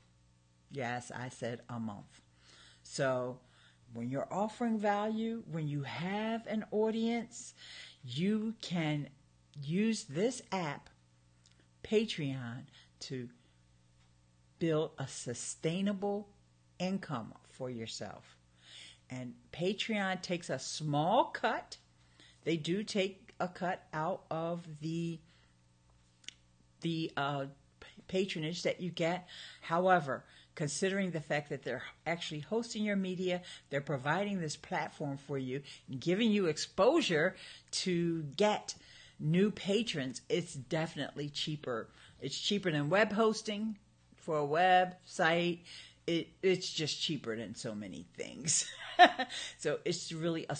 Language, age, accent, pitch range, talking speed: English, 50-69, American, 120-180 Hz, 110 wpm